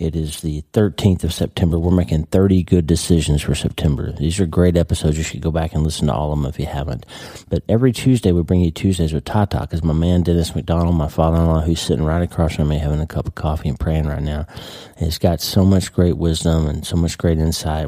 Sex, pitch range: male, 80-100 Hz